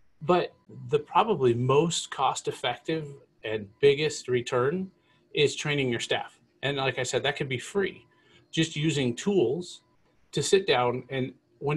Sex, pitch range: male, 130-185 Hz